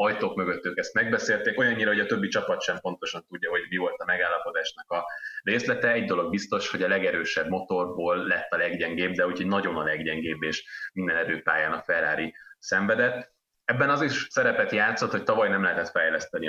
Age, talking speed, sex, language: 30-49, 185 wpm, male, Hungarian